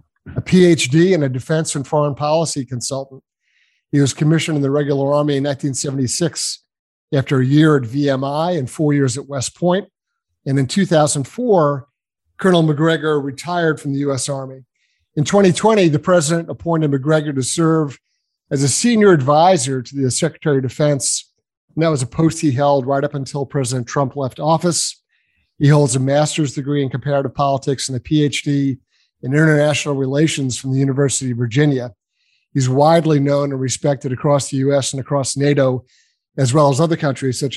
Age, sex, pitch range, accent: 50-69, male, 135-155 Hz, American